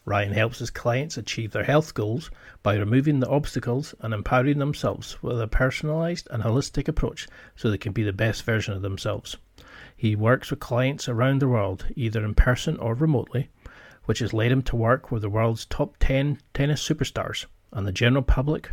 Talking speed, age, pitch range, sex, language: 190 wpm, 40-59, 110-135 Hz, male, English